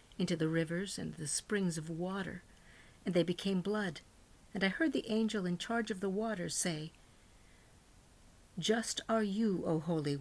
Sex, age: female, 50-69